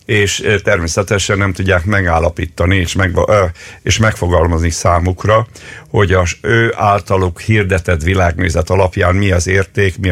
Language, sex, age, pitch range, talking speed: Hungarian, male, 50-69, 90-105 Hz, 125 wpm